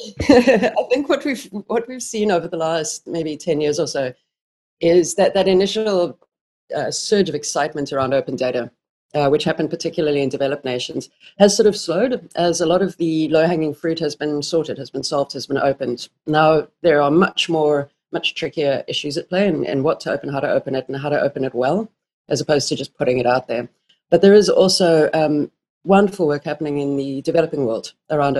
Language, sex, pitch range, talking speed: English, female, 140-175 Hz, 205 wpm